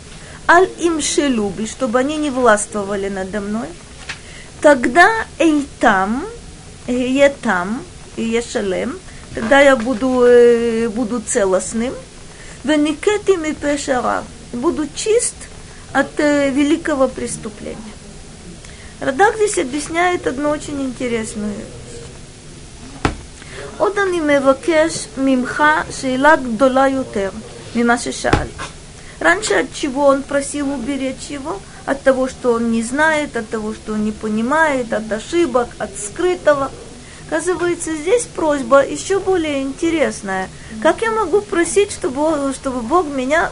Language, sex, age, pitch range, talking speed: Russian, female, 20-39, 250-325 Hz, 95 wpm